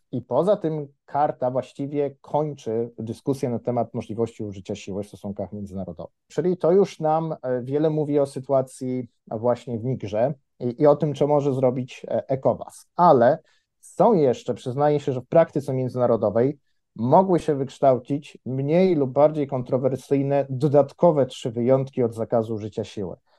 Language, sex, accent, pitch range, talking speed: Polish, male, native, 115-140 Hz, 145 wpm